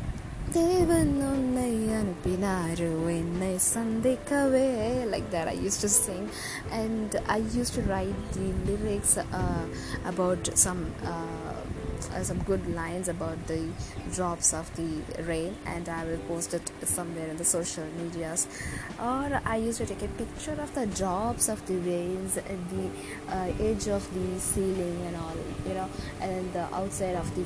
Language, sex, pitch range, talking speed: Tamil, female, 160-205 Hz, 170 wpm